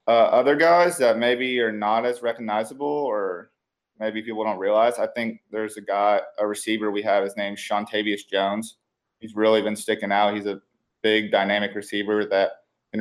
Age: 20-39